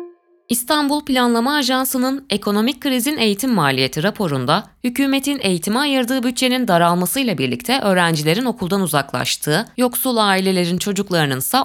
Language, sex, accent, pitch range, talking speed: Turkish, female, native, 155-250 Hz, 105 wpm